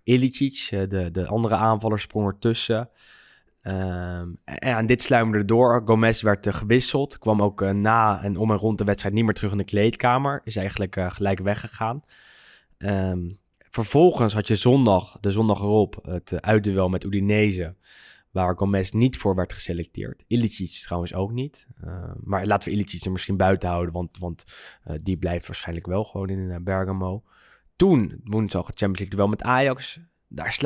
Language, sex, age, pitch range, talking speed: Dutch, male, 10-29, 95-115 Hz, 160 wpm